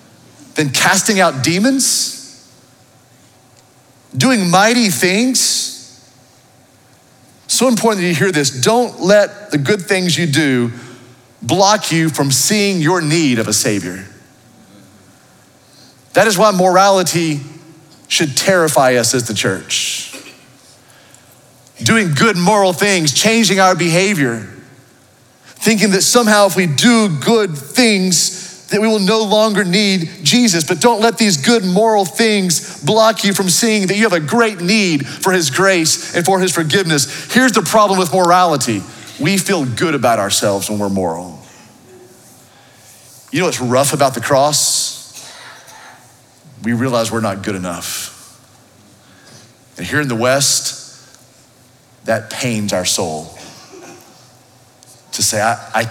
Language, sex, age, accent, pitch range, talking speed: English, male, 40-59, American, 125-200 Hz, 130 wpm